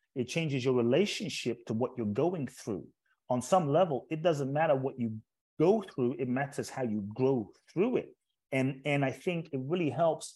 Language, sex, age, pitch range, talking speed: English, male, 30-49, 120-155 Hz, 190 wpm